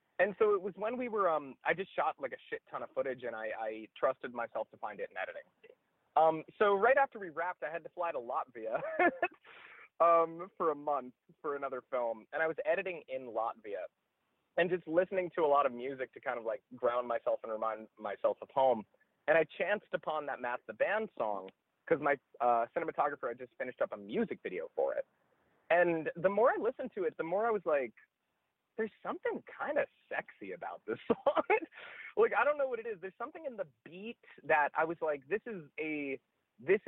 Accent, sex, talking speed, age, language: American, male, 215 wpm, 30-49, English